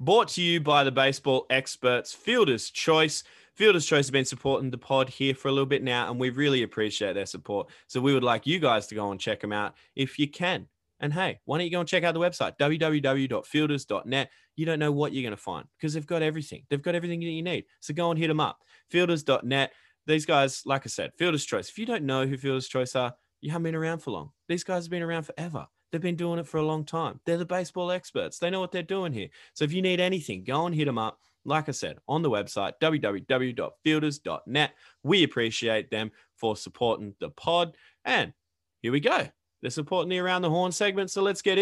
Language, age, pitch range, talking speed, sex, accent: English, 20-39, 130-170 Hz, 235 wpm, male, Australian